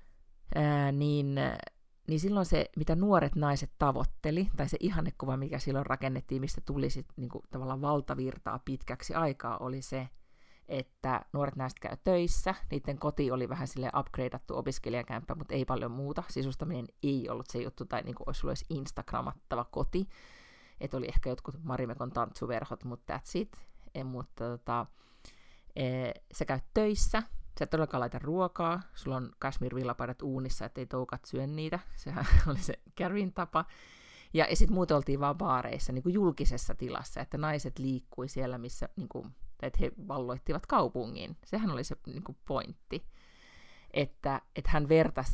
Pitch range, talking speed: 125-150 Hz, 150 wpm